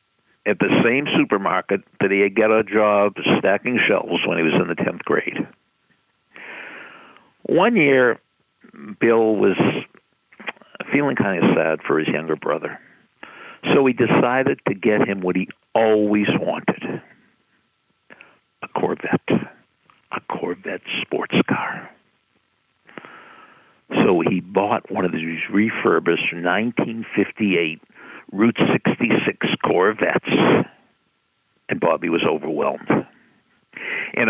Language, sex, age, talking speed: English, male, 60-79, 110 wpm